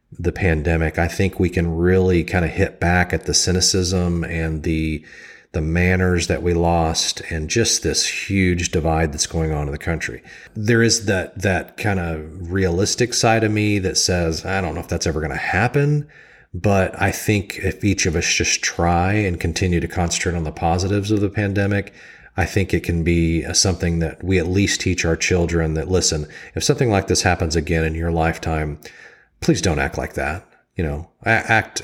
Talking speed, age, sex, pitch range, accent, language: 195 wpm, 40-59, male, 80-95 Hz, American, English